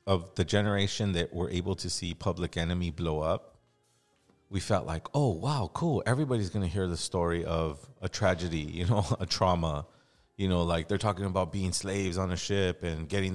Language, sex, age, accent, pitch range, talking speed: English, male, 30-49, American, 90-120 Hz, 200 wpm